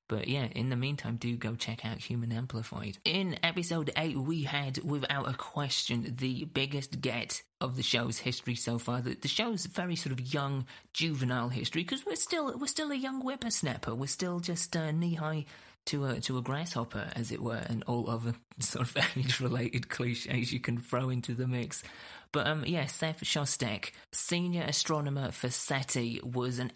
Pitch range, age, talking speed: 120-145 Hz, 30-49, 185 wpm